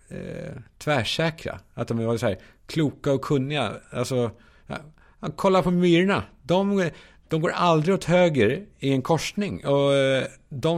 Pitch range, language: 115-170 Hz, Swedish